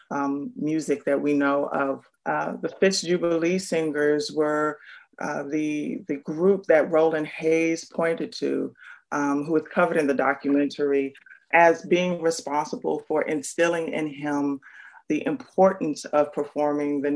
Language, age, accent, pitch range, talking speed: English, 30-49, American, 145-180 Hz, 140 wpm